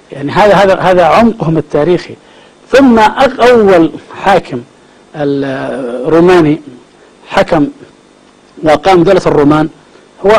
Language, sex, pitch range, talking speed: Arabic, male, 160-195 Hz, 85 wpm